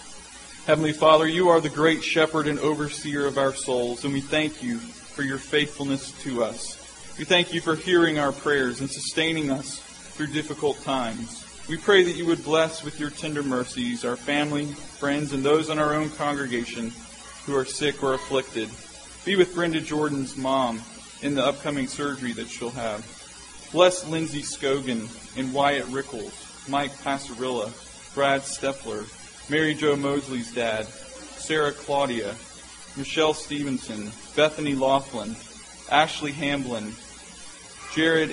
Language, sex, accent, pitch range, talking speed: English, male, American, 130-155 Hz, 145 wpm